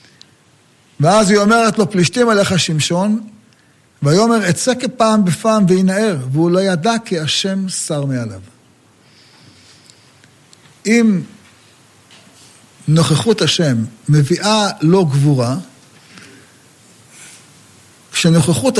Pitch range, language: 130-210 Hz, Hebrew